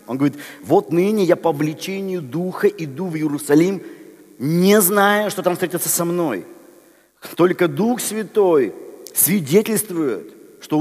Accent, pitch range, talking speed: native, 170-220 Hz, 130 wpm